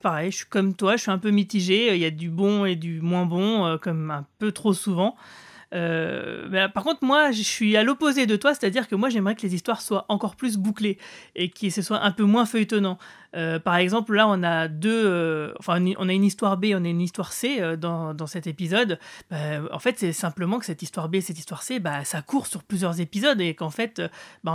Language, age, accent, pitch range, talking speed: French, 30-49, French, 175-215 Hz, 255 wpm